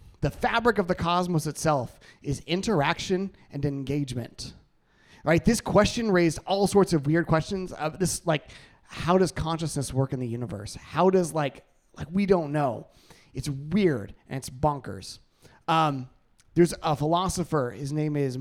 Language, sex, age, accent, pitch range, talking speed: English, male, 30-49, American, 125-170 Hz, 155 wpm